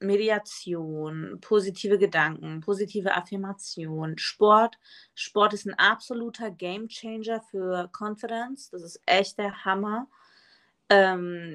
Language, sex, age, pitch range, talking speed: German, female, 30-49, 185-220 Hz, 100 wpm